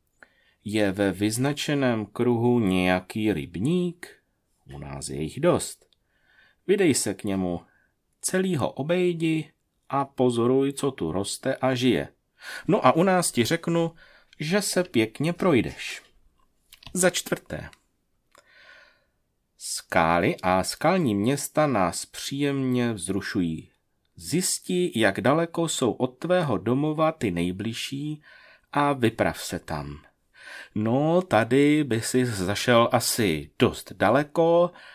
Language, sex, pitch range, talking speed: Czech, male, 105-150 Hz, 110 wpm